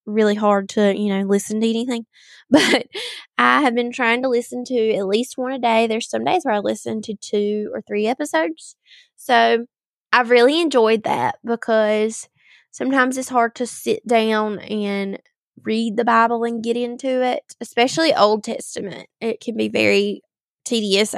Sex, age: female, 20-39